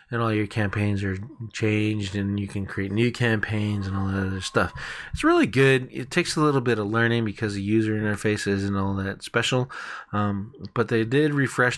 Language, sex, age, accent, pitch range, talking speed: English, male, 20-39, American, 100-115 Hz, 205 wpm